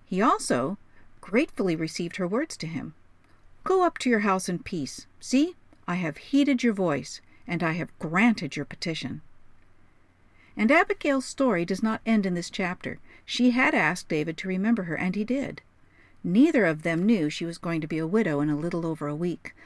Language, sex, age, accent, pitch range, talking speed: English, female, 50-69, American, 155-220 Hz, 190 wpm